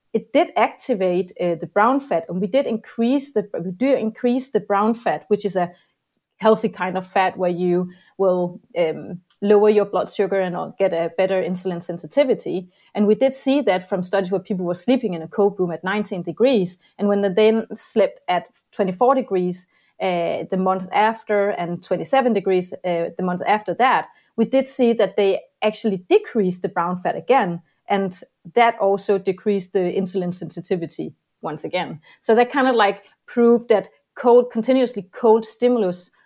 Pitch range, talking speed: 185-225 Hz, 180 wpm